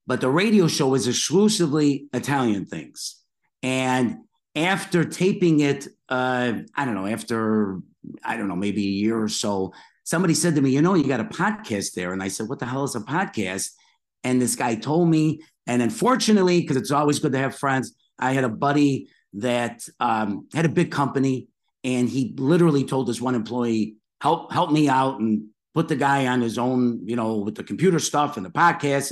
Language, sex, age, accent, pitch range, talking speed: English, male, 50-69, American, 110-145 Hz, 200 wpm